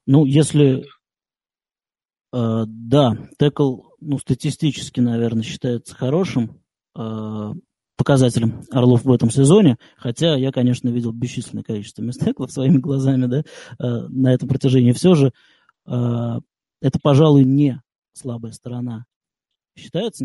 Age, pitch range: 20-39, 120-140 Hz